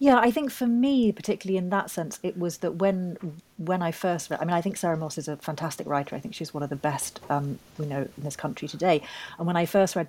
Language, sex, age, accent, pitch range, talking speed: English, female, 40-59, British, 155-190 Hz, 280 wpm